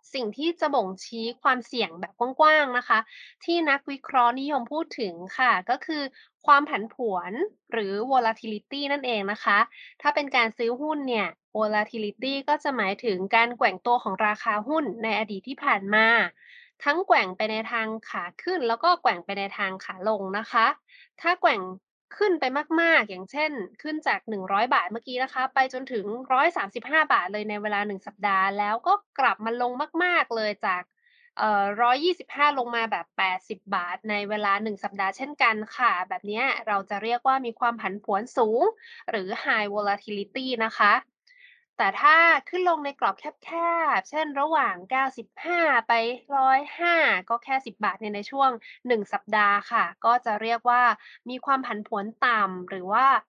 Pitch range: 215-290 Hz